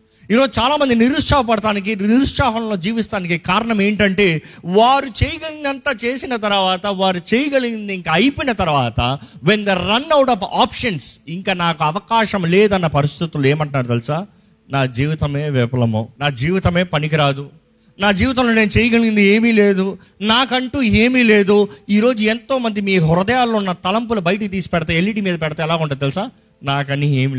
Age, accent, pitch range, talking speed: 30-49, native, 150-225 Hz, 135 wpm